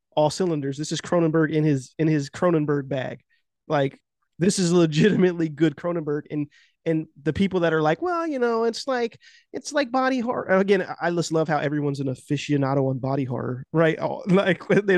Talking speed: 190 wpm